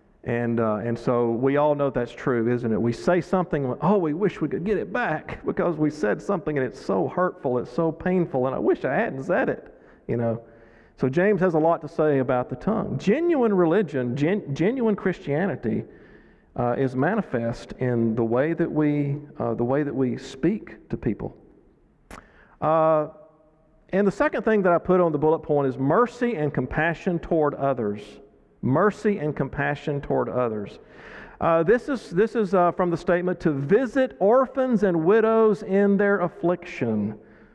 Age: 40-59